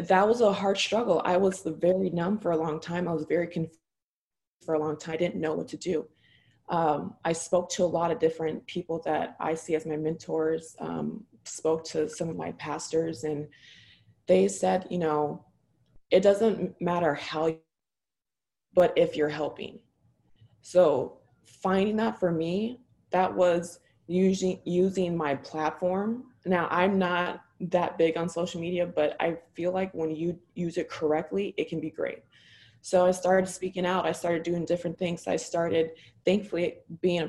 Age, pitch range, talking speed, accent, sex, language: 20-39, 155-180 Hz, 175 wpm, American, female, English